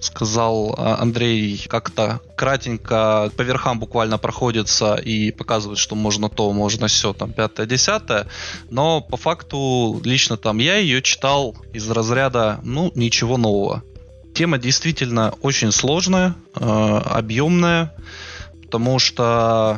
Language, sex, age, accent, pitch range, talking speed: Russian, male, 20-39, native, 110-135 Hz, 115 wpm